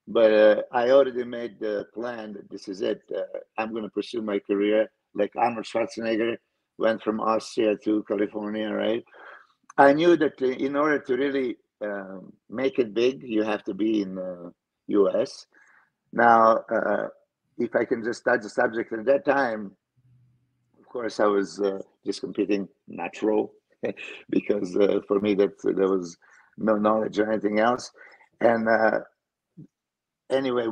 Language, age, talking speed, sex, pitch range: English, 50-69, 155 wpm, male, 105-125 Hz